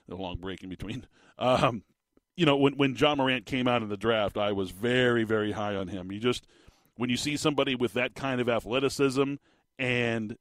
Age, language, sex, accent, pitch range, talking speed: 40-59, English, male, American, 110-150 Hz, 210 wpm